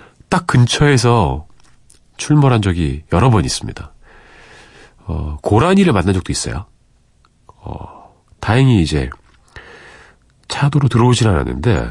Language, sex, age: Korean, male, 40-59